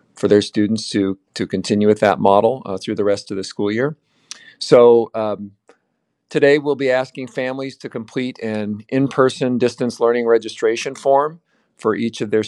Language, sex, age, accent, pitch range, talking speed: English, male, 50-69, American, 105-120 Hz, 175 wpm